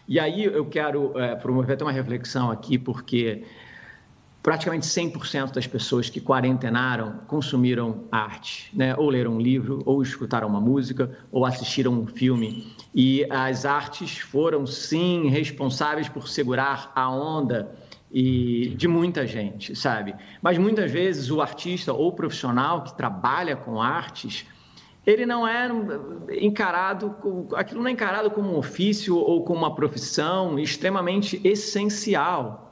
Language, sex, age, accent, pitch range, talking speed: Portuguese, male, 40-59, Brazilian, 125-170 Hz, 135 wpm